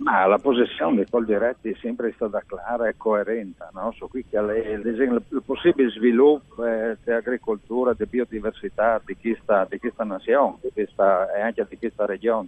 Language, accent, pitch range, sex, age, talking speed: Italian, native, 110-145 Hz, male, 60-79, 140 wpm